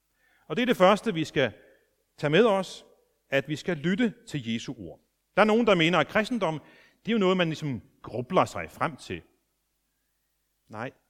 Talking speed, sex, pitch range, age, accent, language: 190 wpm, male, 130-200 Hz, 40-59, native, Danish